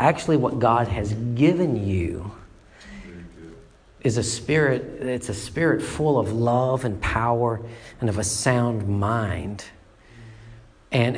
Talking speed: 125 wpm